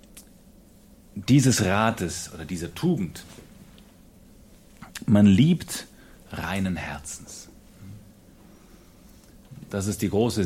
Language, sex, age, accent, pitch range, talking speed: German, male, 40-59, German, 85-115 Hz, 75 wpm